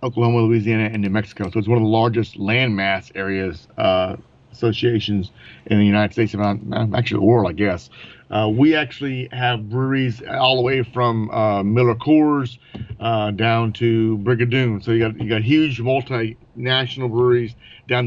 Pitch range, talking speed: 110-130 Hz, 165 wpm